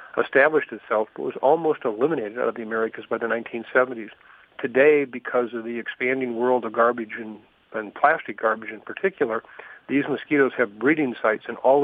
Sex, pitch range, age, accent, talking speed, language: male, 115-140 Hz, 50-69, American, 170 wpm, English